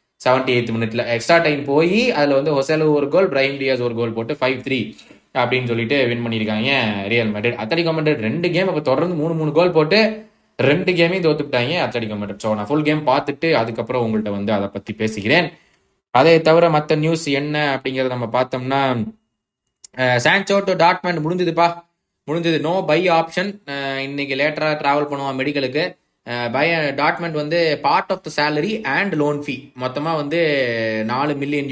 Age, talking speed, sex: 20-39, 85 wpm, male